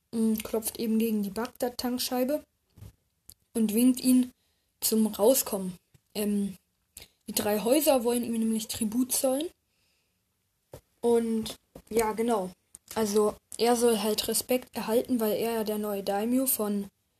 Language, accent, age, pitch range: German, German, 10-29, 210-245 Hz